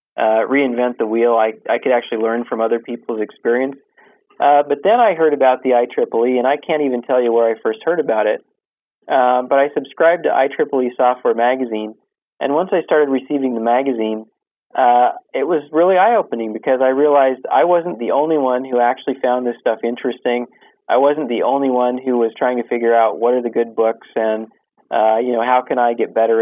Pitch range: 115-130 Hz